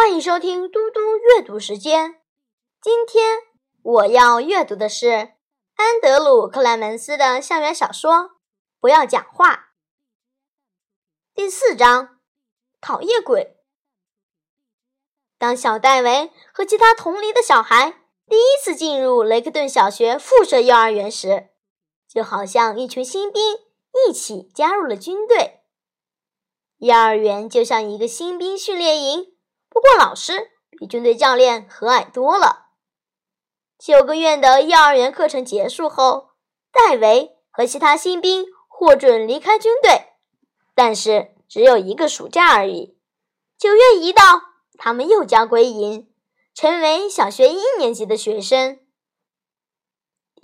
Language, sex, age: Chinese, male, 20-39